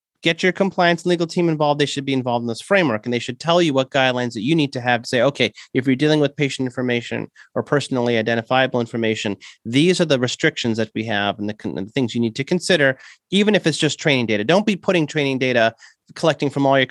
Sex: male